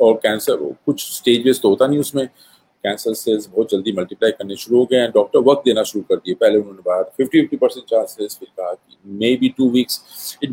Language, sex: Hindi, male